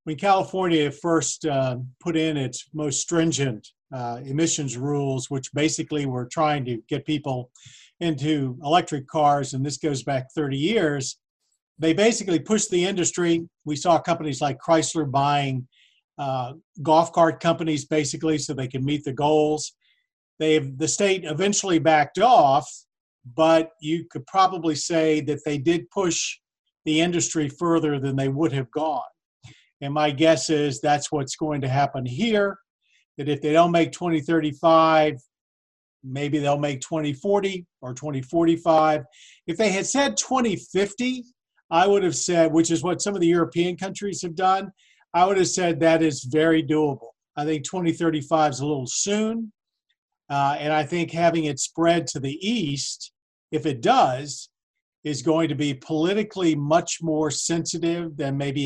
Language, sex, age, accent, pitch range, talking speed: English, male, 50-69, American, 145-170 Hz, 155 wpm